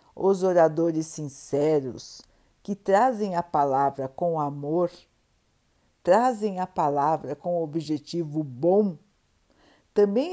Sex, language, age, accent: female, Portuguese, 60-79, Brazilian